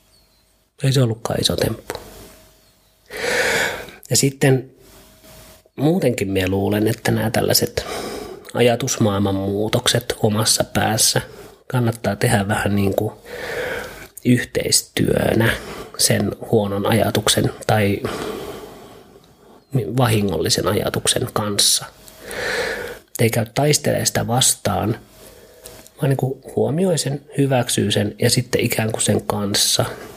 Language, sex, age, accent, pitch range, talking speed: Finnish, male, 30-49, native, 105-130 Hz, 90 wpm